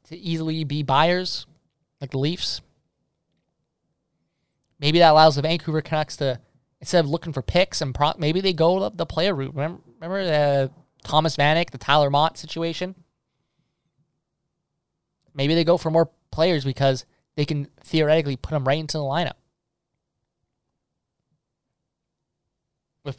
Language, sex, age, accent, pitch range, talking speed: English, male, 20-39, American, 140-165 Hz, 140 wpm